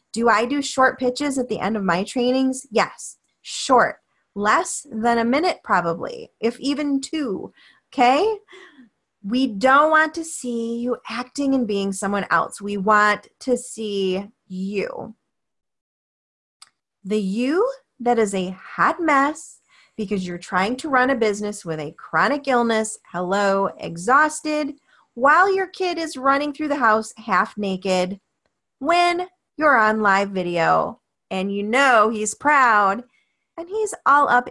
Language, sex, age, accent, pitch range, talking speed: English, female, 30-49, American, 200-275 Hz, 145 wpm